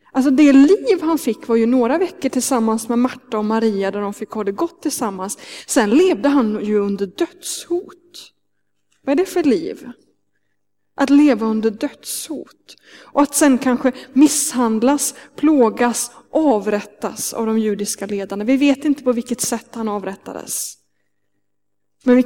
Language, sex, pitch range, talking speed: Swedish, female, 210-275 Hz, 155 wpm